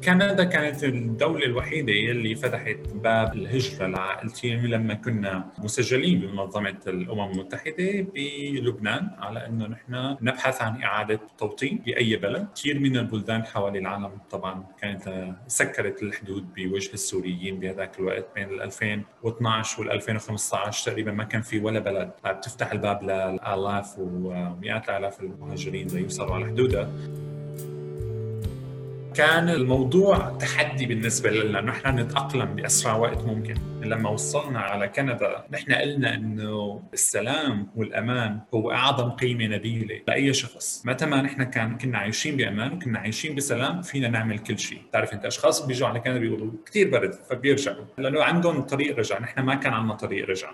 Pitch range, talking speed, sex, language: 105-135 Hz, 140 wpm, male, Arabic